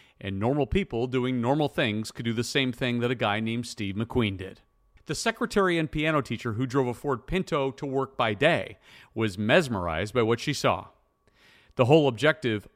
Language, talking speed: English, 195 wpm